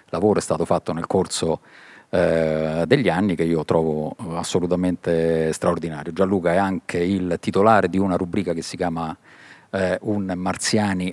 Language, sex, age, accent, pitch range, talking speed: Italian, male, 50-69, native, 85-100 Hz, 150 wpm